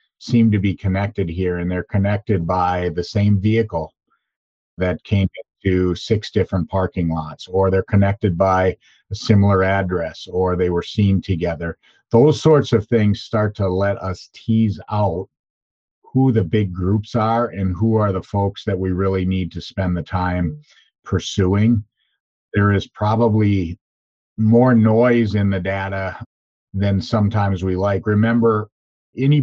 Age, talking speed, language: 50-69, 150 wpm, English